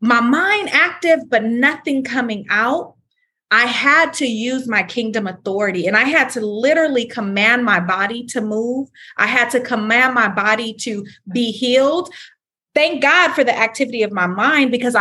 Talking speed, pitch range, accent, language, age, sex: 170 wpm, 220-280 Hz, American, English, 30-49, female